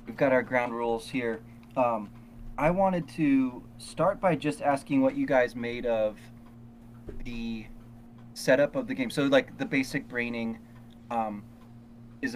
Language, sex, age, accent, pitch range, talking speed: English, male, 30-49, American, 115-135 Hz, 150 wpm